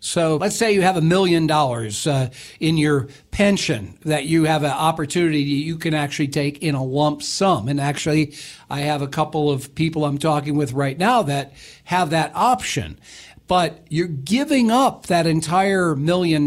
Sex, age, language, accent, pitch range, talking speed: male, 60-79, English, American, 145-185 Hz, 175 wpm